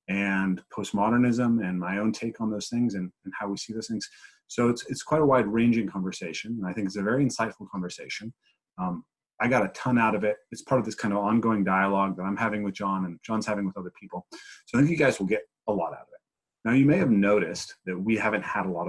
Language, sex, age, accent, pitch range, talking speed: English, male, 30-49, American, 95-125 Hz, 260 wpm